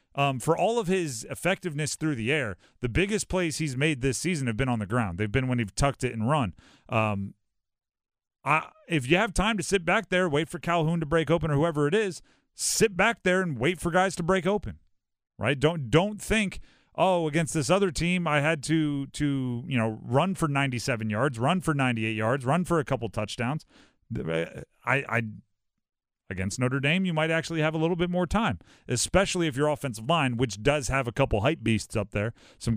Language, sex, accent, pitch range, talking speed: English, male, American, 115-165 Hz, 220 wpm